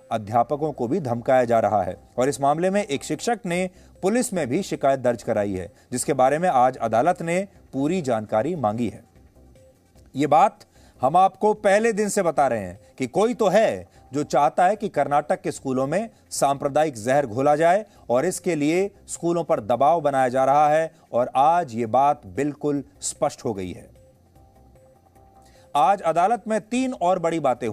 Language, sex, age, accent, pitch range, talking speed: English, male, 30-49, Indian, 130-195 Hz, 180 wpm